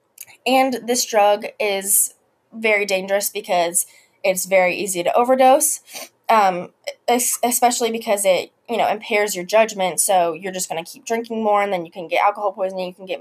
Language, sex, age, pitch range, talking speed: English, female, 20-39, 185-240 Hz, 175 wpm